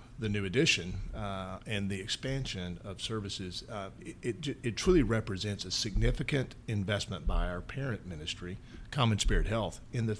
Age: 40-59